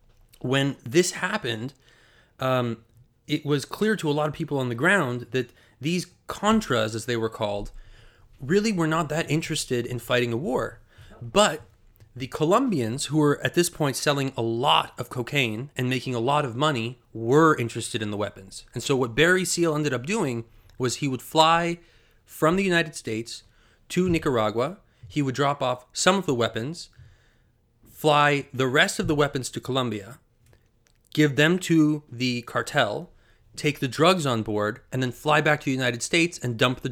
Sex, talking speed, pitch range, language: male, 180 wpm, 115-150 Hz, English